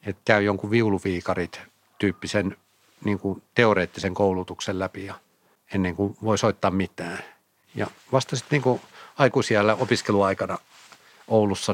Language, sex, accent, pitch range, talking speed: Finnish, male, native, 95-115 Hz, 105 wpm